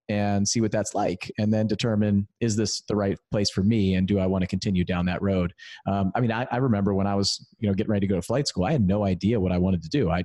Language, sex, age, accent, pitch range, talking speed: English, male, 30-49, American, 95-115 Hz, 305 wpm